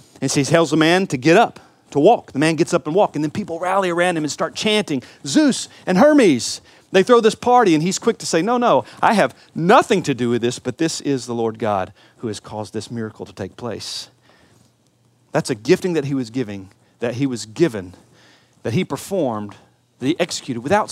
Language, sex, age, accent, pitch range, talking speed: English, male, 40-59, American, 110-165 Hz, 225 wpm